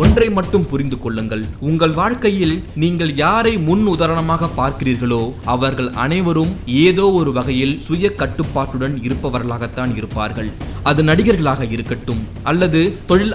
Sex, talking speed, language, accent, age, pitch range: male, 65 wpm, Tamil, native, 20-39, 130-190 Hz